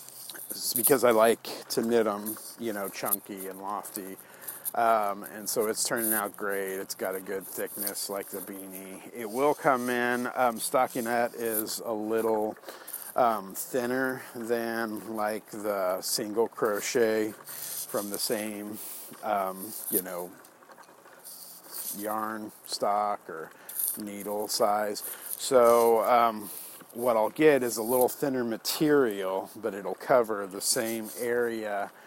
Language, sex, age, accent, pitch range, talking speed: English, male, 40-59, American, 100-115 Hz, 125 wpm